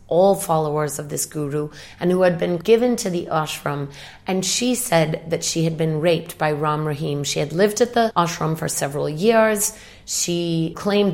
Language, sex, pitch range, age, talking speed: English, female, 160-200 Hz, 30-49, 190 wpm